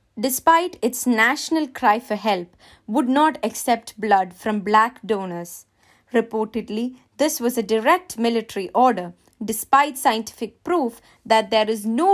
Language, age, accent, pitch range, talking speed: English, 20-39, Indian, 215-270 Hz, 135 wpm